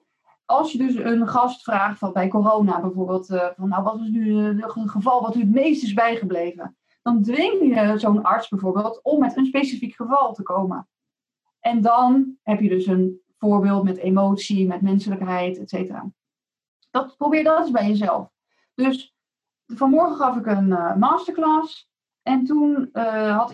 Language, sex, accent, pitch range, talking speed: Dutch, female, Dutch, 205-260 Hz, 165 wpm